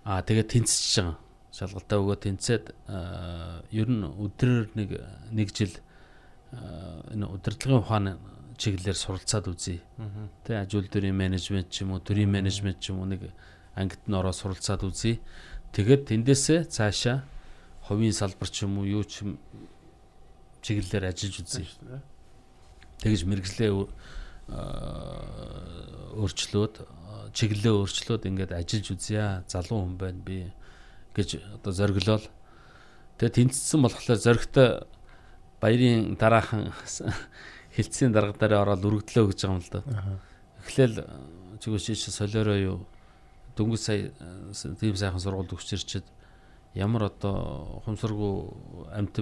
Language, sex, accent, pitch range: Korean, male, Indian, 95-110 Hz